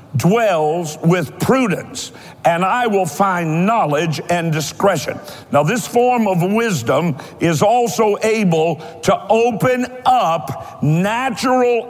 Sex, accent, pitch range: male, American, 165-225 Hz